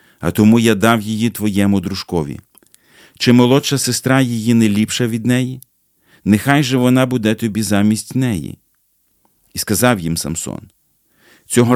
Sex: male